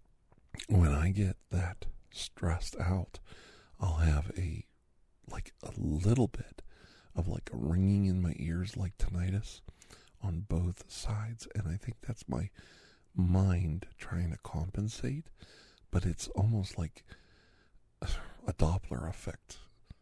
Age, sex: 50-69, male